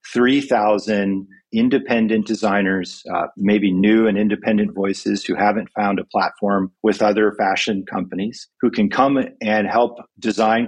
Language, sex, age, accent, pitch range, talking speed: English, male, 40-59, American, 100-115 Hz, 135 wpm